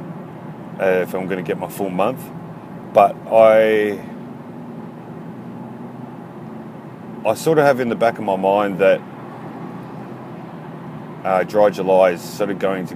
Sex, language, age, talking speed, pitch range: male, English, 30-49, 140 wpm, 100-125 Hz